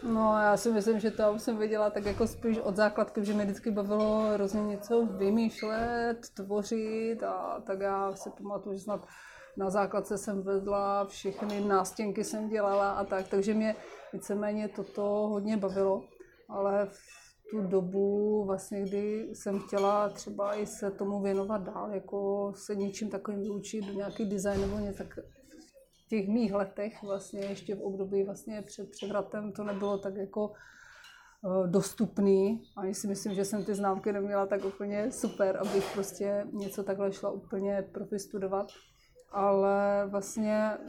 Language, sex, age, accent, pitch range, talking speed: Czech, female, 30-49, native, 195-215 Hz, 155 wpm